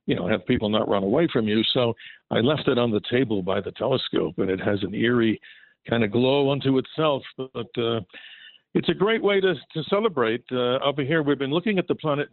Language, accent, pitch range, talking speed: English, American, 120-155 Hz, 230 wpm